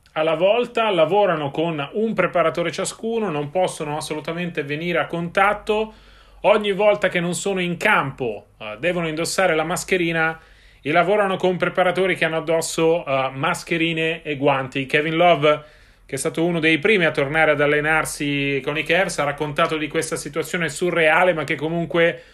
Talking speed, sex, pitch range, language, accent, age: 160 wpm, male, 155-185 Hz, Italian, native, 30-49